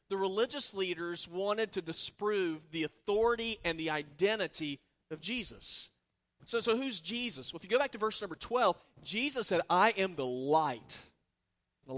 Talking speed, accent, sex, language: 165 wpm, American, male, English